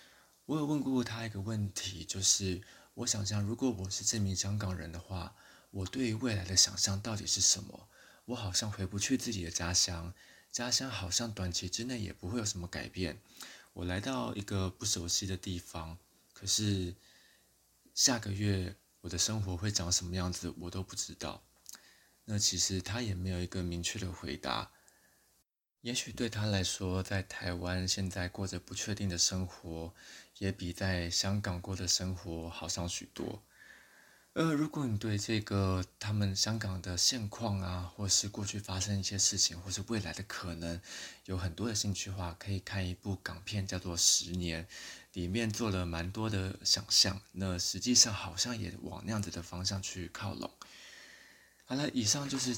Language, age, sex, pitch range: Chinese, 20-39, male, 90-105 Hz